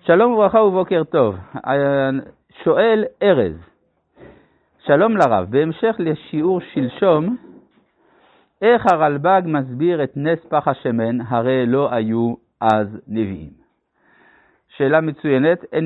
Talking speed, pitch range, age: 100 wpm, 125-175 Hz, 60-79